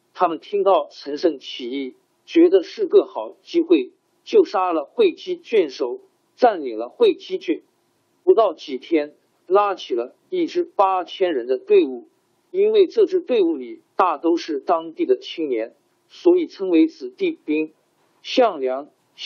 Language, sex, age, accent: Chinese, male, 50-69, native